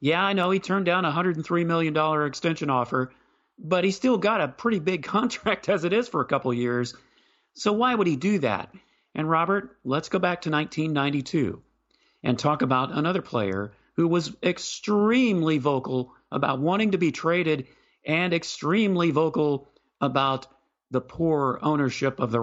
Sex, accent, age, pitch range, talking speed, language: male, American, 40-59, 130-185 Hz, 170 wpm, English